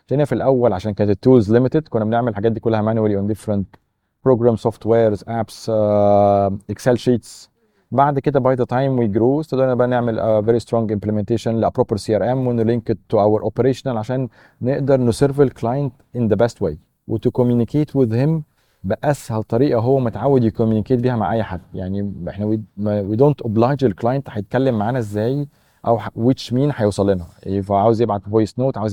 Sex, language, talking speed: male, Arabic, 170 wpm